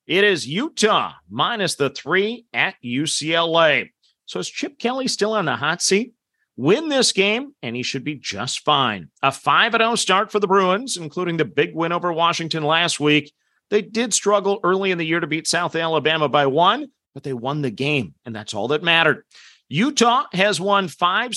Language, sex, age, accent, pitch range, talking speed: English, male, 40-59, American, 155-205 Hz, 190 wpm